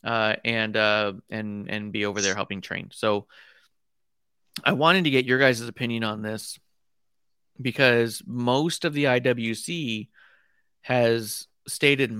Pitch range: 115-140 Hz